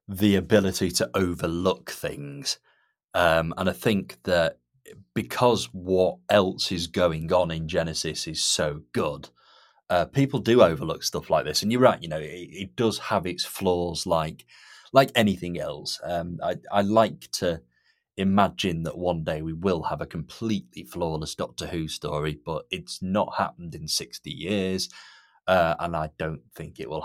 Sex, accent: male, British